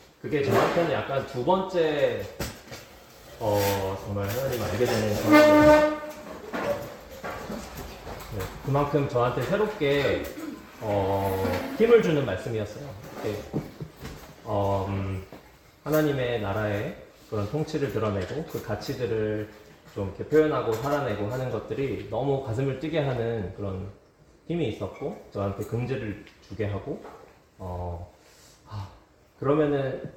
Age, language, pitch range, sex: 30-49, Korean, 100-150 Hz, male